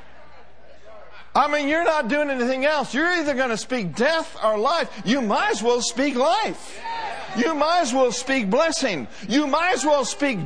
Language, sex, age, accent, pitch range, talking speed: English, male, 60-79, American, 215-290 Hz, 185 wpm